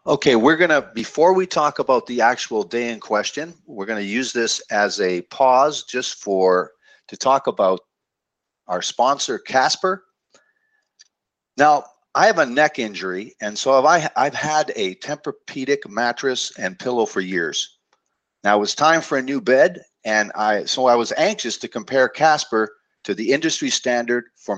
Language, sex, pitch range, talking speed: English, male, 110-160 Hz, 170 wpm